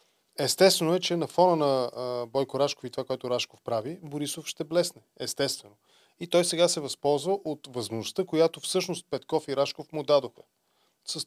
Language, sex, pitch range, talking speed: Bulgarian, male, 125-155 Hz, 175 wpm